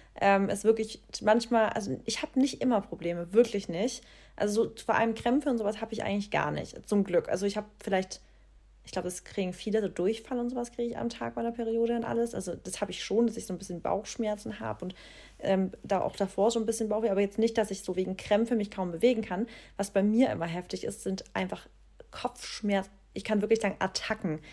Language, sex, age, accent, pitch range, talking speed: German, female, 30-49, German, 190-230 Hz, 230 wpm